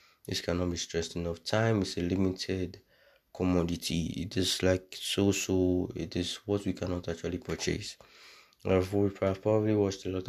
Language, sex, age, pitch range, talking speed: English, male, 20-39, 85-95 Hz, 155 wpm